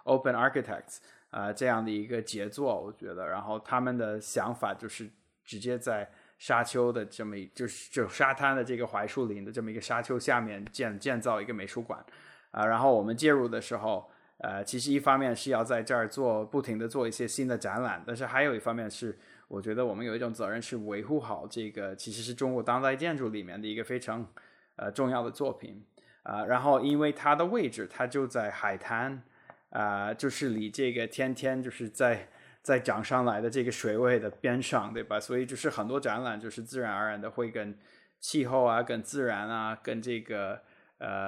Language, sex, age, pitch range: Chinese, male, 20-39, 110-130 Hz